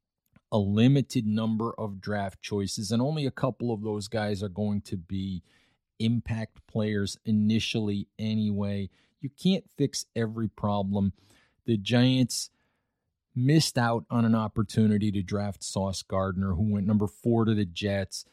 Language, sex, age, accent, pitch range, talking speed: English, male, 40-59, American, 100-115 Hz, 145 wpm